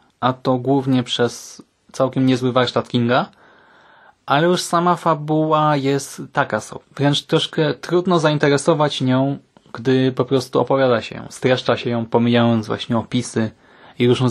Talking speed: 145 wpm